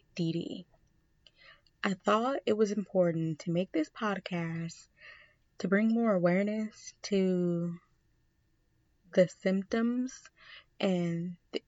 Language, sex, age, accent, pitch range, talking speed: English, female, 20-39, American, 175-215 Hz, 90 wpm